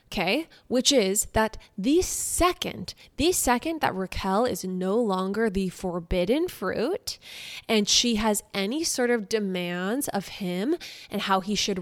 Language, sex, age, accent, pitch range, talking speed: English, female, 20-39, American, 195-280 Hz, 145 wpm